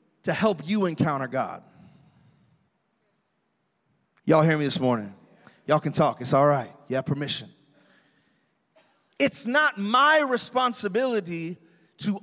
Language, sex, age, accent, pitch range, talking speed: English, male, 30-49, American, 180-215 Hz, 120 wpm